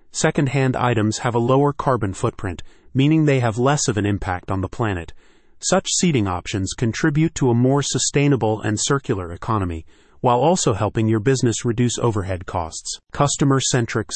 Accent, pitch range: American, 110-140 Hz